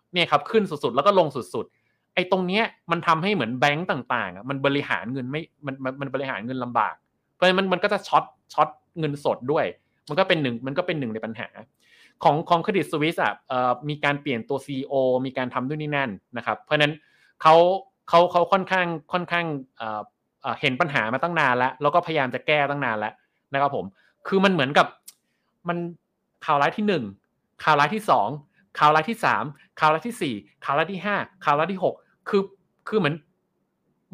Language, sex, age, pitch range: Thai, male, 20-39, 140-190 Hz